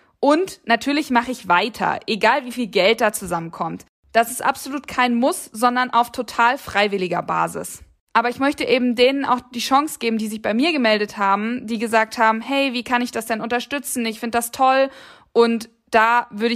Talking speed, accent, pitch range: 190 wpm, German, 215-280 Hz